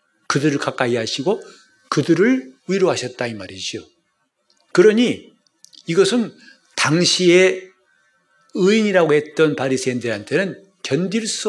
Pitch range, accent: 130-195 Hz, native